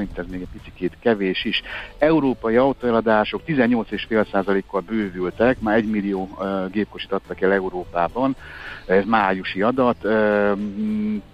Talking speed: 120 wpm